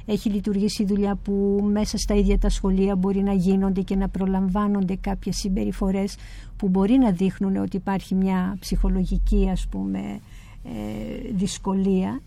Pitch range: 185-215 Hz